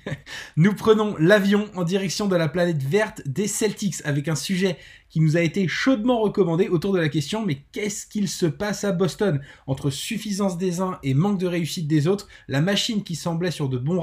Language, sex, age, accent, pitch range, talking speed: French, male, 20-39, French, 145-200 Hz, 205 wpm